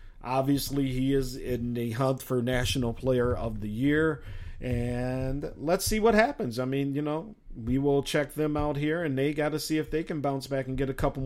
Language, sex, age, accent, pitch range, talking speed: English, male, 40-59, American, 95-130 Hz, 220 wpm